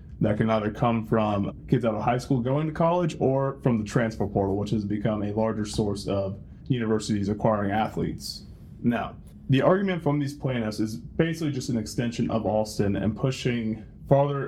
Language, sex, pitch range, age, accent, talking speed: English, male, 105-125 Hz, 20-39, American, 180 wpm